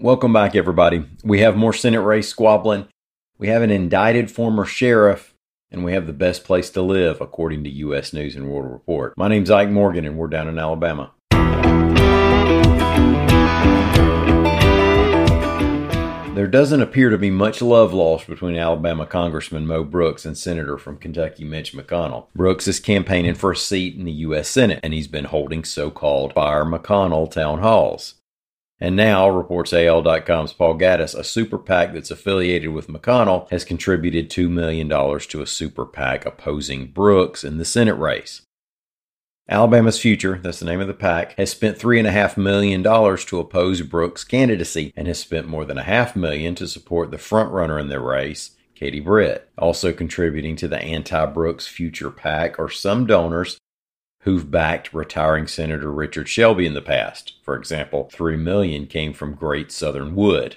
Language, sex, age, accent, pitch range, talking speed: English, male, 40-59, American, 80-100 Hz, 160 wpm